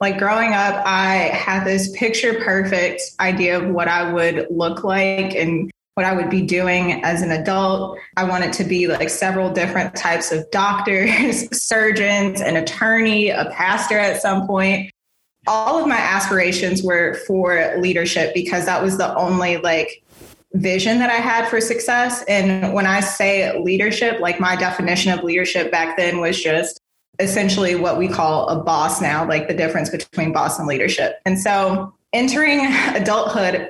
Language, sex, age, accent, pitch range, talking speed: English, female, 20-39, American, 175-195 Hz, 165 wpm